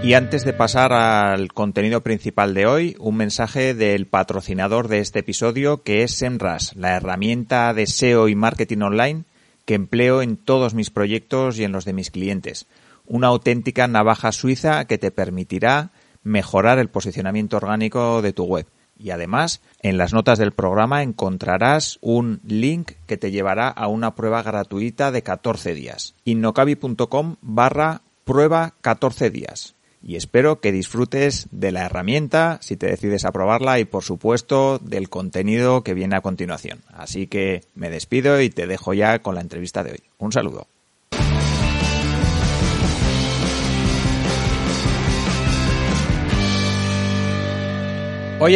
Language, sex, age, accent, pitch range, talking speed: Spanish, male, 30-49, Spanish, 95-130 Hz, 140 wpm